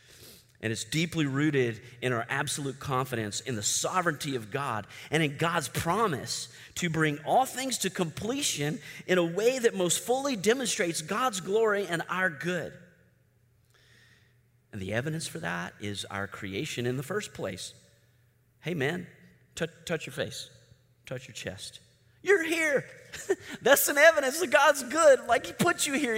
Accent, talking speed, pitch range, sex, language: American, 155 wpm, 115-180 Hz, male, English